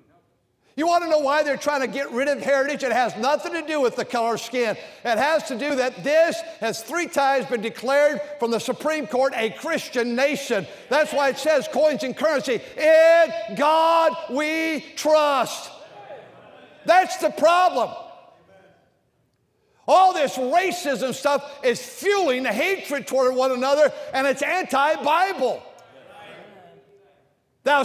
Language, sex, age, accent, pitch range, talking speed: English, male, 50-69, American, 240-285 Hz, 150 wpm